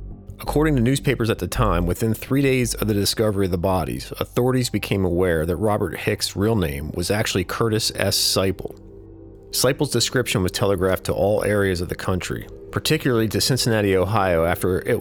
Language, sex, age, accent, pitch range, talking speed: English, male, 40-59, American, 95-110 Hz, 175 wpm